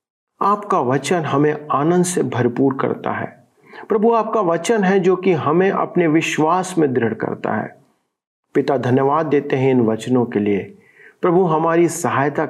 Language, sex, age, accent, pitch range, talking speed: Hindi, male, 40-59, native, 130-195 Hz, 155 wpm